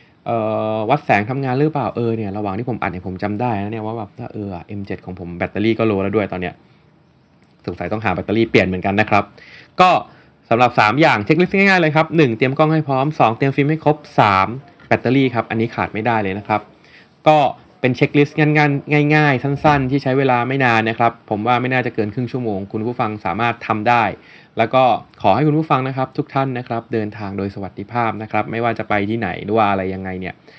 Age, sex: 20-39, male